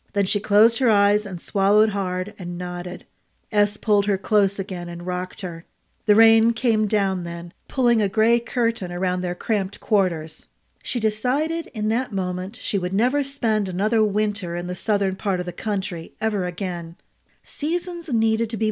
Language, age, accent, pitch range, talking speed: English, 40-59, American, 180-220 Hz, 175 wpm